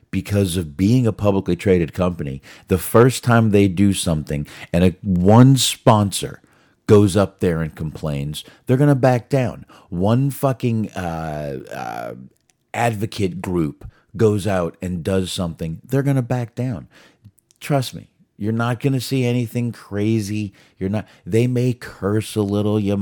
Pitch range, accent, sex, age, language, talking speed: 95-125 Hz, American, male, 40-59, English, 155 wpm